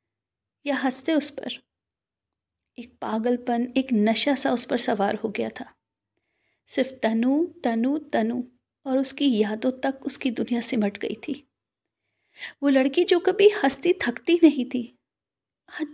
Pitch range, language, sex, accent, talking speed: 250-330 Hz, Hindi, female, native, 135 wpm